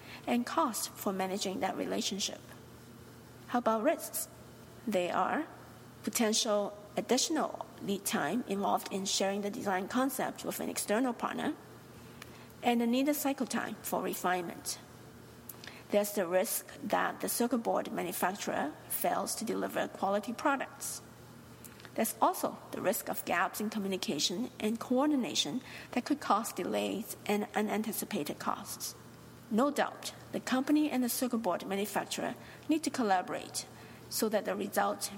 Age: 50-69